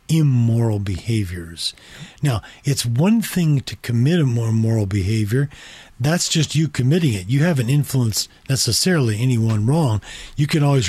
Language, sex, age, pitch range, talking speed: English, male, 40-59, 110-160 Hz, 145 wpm